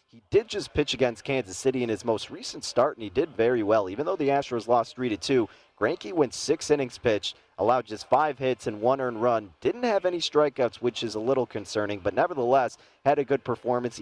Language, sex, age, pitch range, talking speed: English, male, 30-49, 115-135 Hz, 220 wpm